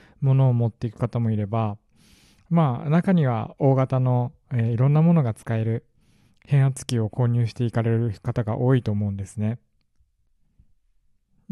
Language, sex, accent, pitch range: Japanese, male, native, 110-145 Hz